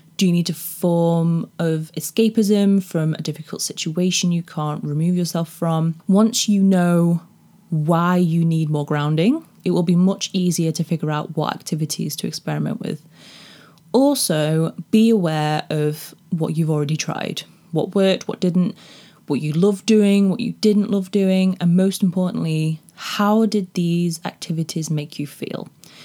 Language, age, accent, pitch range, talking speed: English, 20-39, British, 160-195 Hz, 155 wpm